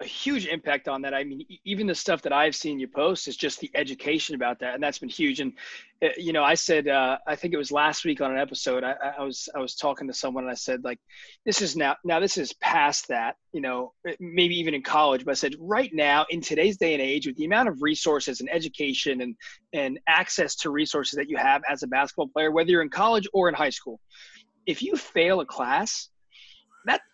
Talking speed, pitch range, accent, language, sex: 240 wpm, 140-205 Hz, American, English, male